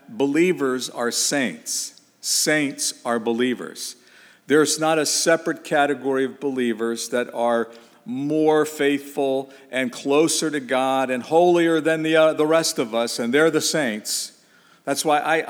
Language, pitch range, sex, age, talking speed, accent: English, 120-150 Hz, male, 50-69, 145 wpm, American